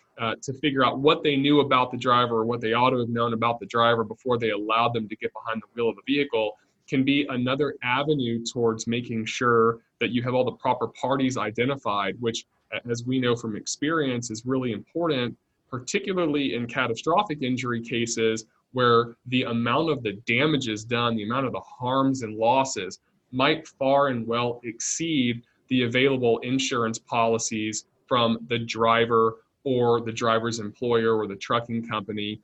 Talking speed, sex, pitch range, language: 175 wpm, male, 115-130 Hz, English